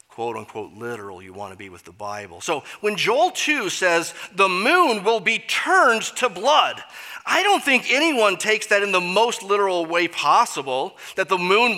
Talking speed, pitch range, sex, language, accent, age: 185 wpm, 145-230 Hz, male, English, American, 30-49